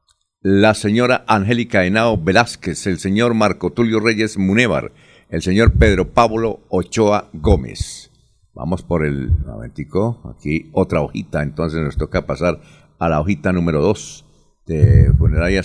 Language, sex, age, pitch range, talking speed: Spanish, male, 50-69, 85-115 Hz, 140 wpm